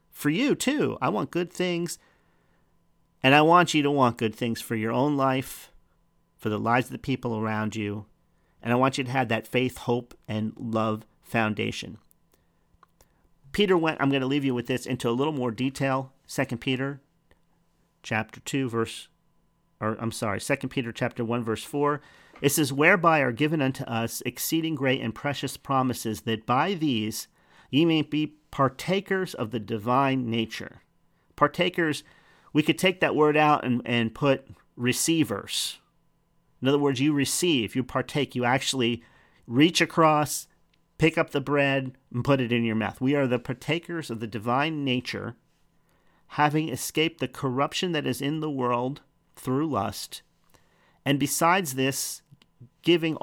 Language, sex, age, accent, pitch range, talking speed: English, male, 40-59, American, 120-150 Hz, 165 wpm